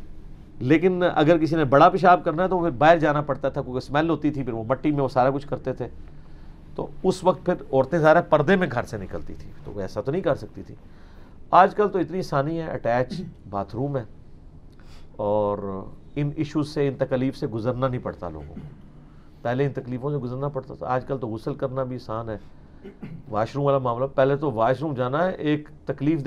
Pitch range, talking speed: 125-180 Hz, 160 wpm